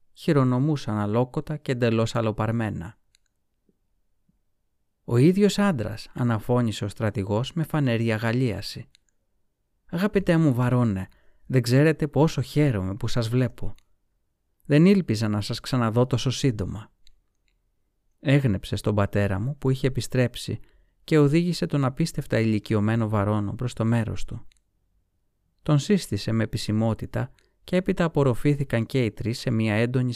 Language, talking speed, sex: Greek, 125 wpm, male